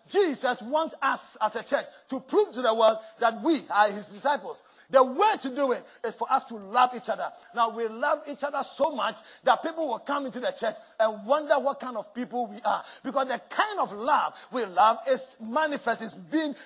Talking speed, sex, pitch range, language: 220 wpm, male, 225-285 Hz, English